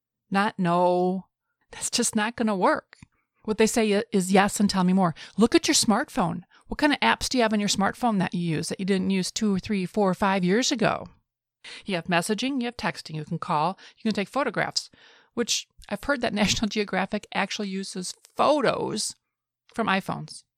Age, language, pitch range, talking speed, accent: 30-49, English, 180-225 Hz, 205 wpm, American